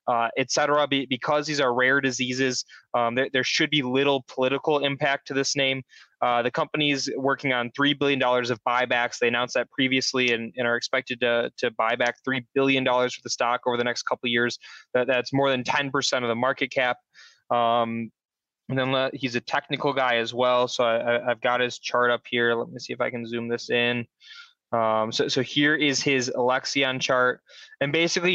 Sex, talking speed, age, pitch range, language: male, 205 wpm, 20-39, 125-140 Hz, English